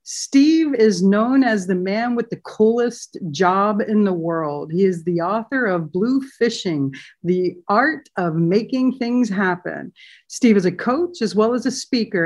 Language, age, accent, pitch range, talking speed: English, 50-69, American, 175-235 Hz, 170 wpm